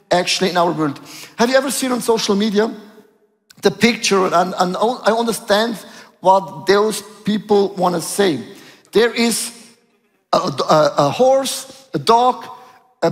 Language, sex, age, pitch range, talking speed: English, male, 50-69, 190-235 Hz, 145 wpm